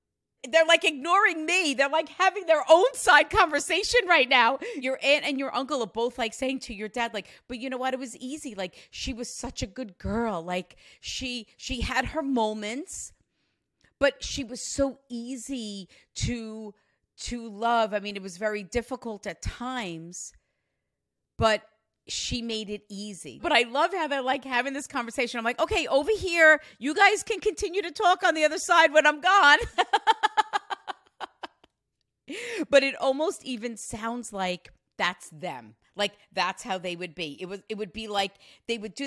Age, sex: 40-59, female